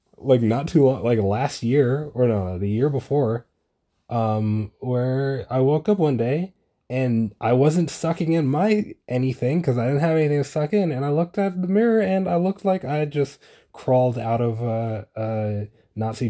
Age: 20-39